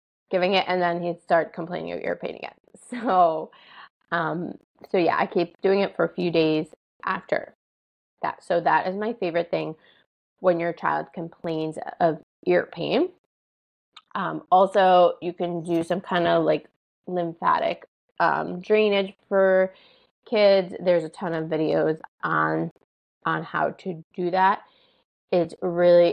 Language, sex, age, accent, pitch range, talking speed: English, female, 20-39, American, 170-200 Hz, 150 wpm